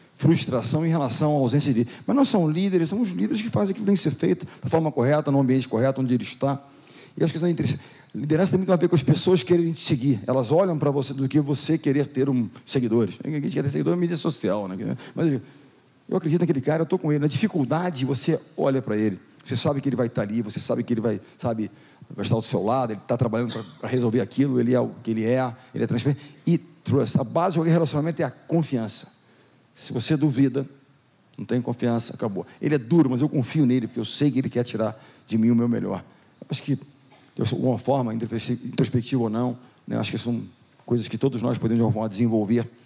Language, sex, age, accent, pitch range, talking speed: Portuguese, male, 40-59, Brazilian, 120-160 Hz, 235 wpm